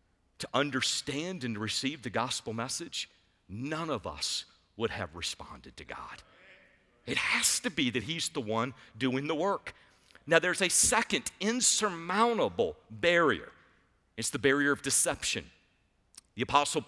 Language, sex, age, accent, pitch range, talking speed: English, male, 50-69, American, 140-190 Hz, 140 wpm